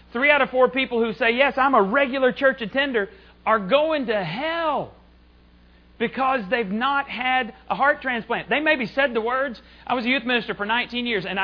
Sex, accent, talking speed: male, American, 200 wpm